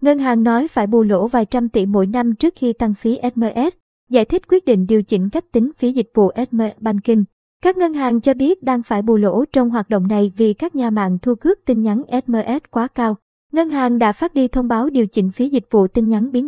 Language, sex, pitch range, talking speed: Vietnamese, male, 220-260 Hz, 250 wpm